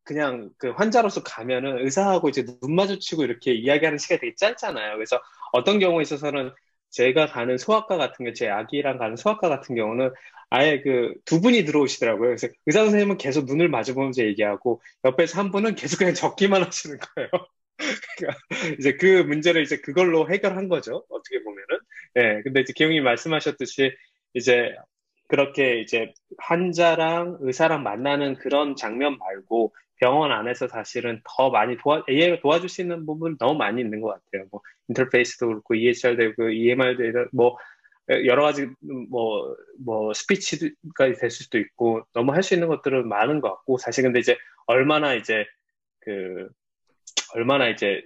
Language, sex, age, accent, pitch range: Korean, male, 20-39, native, 125-185 Hz